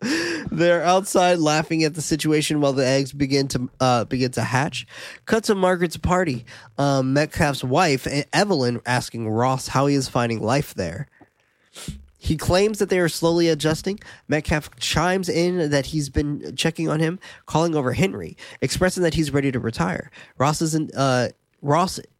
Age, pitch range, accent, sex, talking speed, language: 20-39, 130-165 Hz, American, male, 160 wpm, English